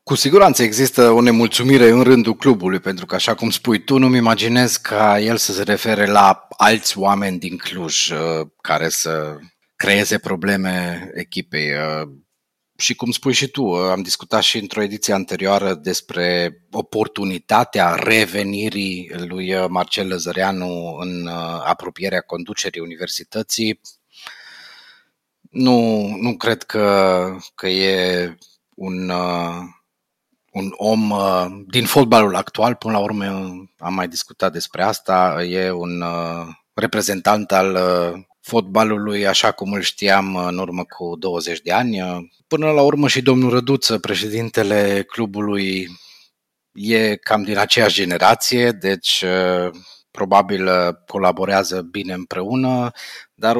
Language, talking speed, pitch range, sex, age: Romanian, 120 wpm, 90-115 Hz, male, 30-49